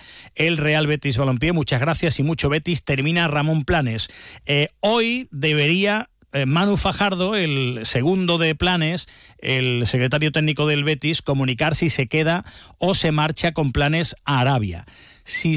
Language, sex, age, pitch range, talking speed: Spanish, male, 40-59, 130-170 Hz, 150 wpm